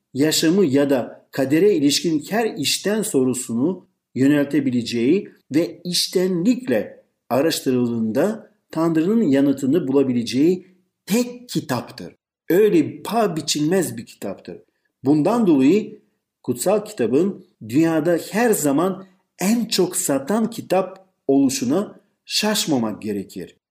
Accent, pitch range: native, 135-205 Hz